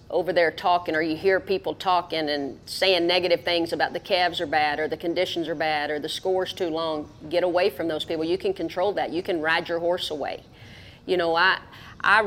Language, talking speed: English, 225 wpm